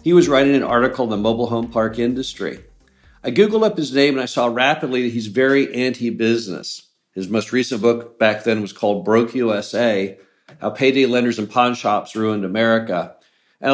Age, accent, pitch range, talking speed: 50-69, American, 115-135 Hz, 190 wpm